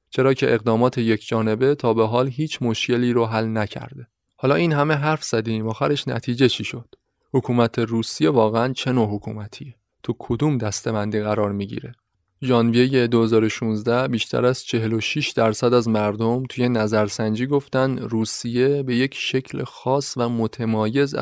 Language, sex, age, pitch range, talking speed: Persian, male, 20-39, 110-125 Hz, 145 wpm